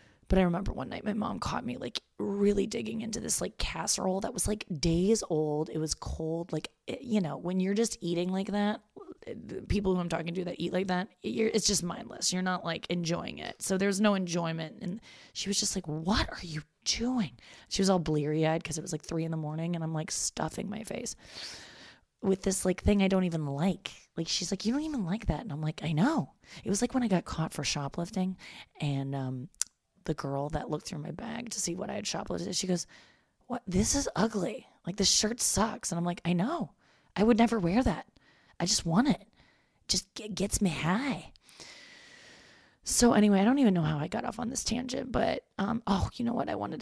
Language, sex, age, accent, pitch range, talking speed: English, female, 20-39, American, 170-220 Hz, 230 wpm